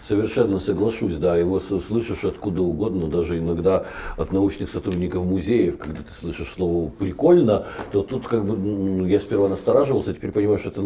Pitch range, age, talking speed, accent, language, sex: 95-120 Hz, 60-79, 160 wpm, native, Ukrainian, male